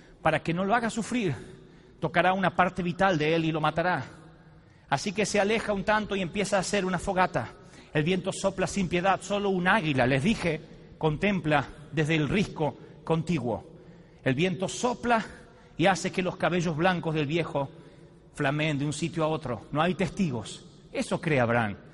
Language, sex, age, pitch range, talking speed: Spanish, male, 40-59, 160-215 Hz, 180 wpm